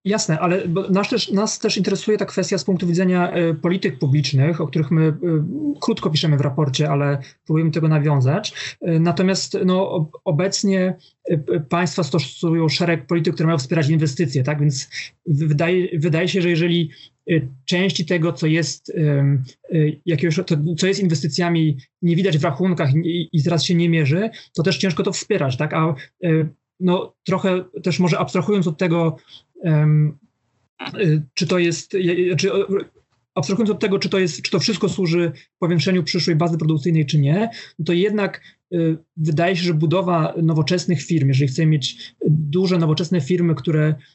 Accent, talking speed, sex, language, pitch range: native, 160 wpm, male, Polish, 155-180 Hz